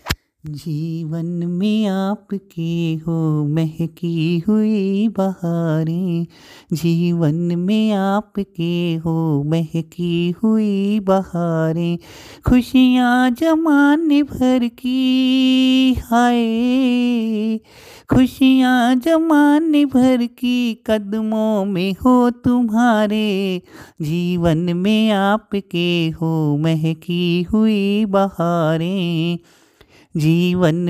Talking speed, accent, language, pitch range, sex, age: 70 wpm, native, Hindi, 165-215 Hz, male, 30-49